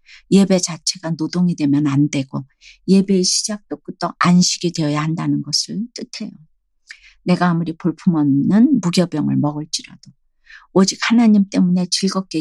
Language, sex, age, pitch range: Korean, female, 50-69, 155-195 Hz